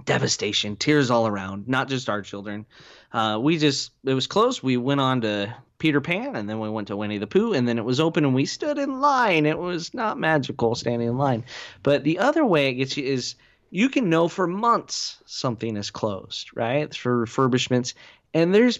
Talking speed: 210 wpm